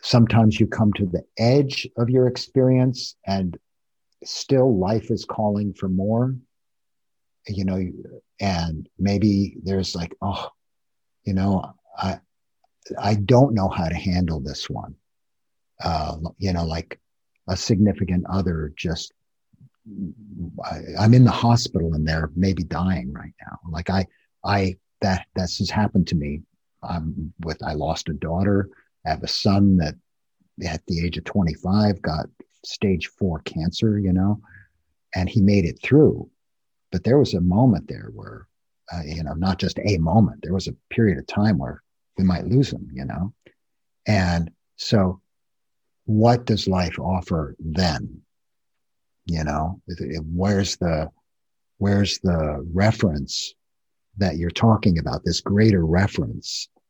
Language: English